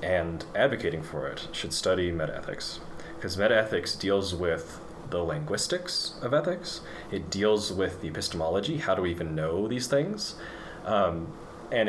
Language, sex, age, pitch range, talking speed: English, male, 20-39, 85-115 Hz, 145 wpm